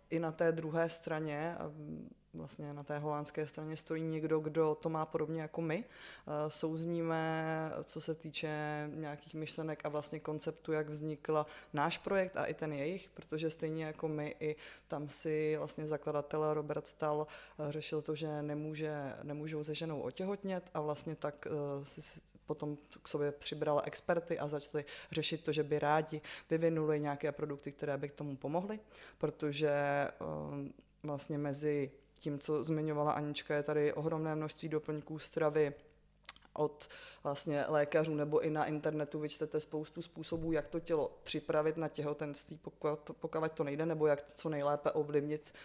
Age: 20-39